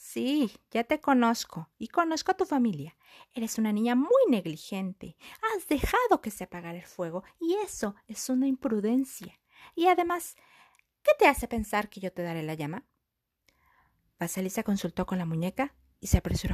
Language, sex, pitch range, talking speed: Spanish, female, 175-265 Hz, 165 wpm